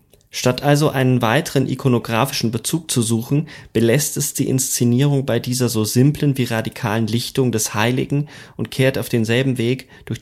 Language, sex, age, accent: German, male, 30-49, German